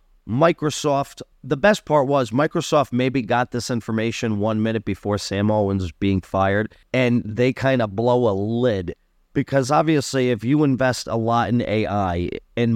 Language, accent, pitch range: English, American, 100-125 Hz